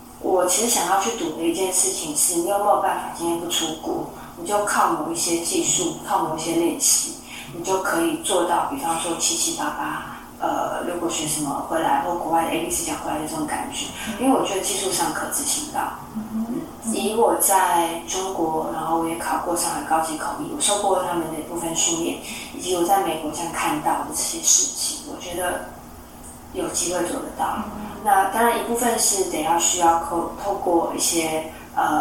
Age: 20-39